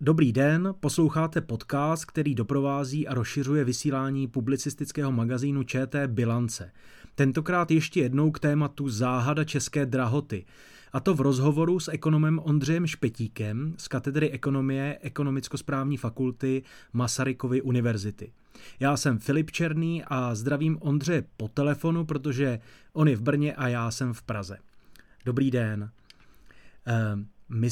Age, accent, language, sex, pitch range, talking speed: 30-49, native, Czech, male, 120-145 Hz, 125 wpm